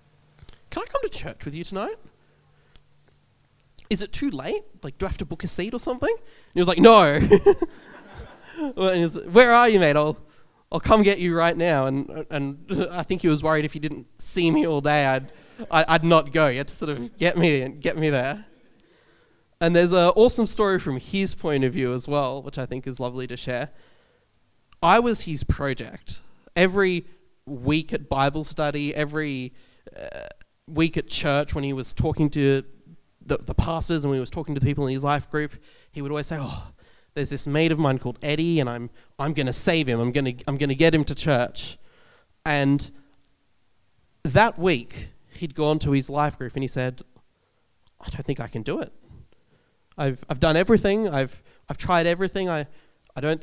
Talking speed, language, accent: 210 wpm, English, Australian